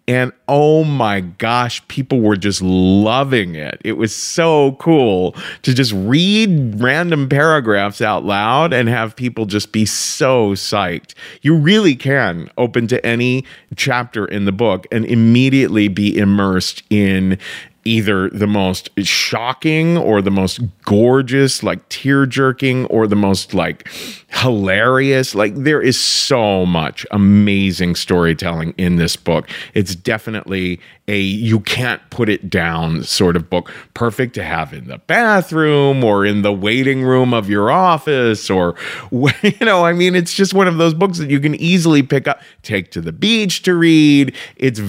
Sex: male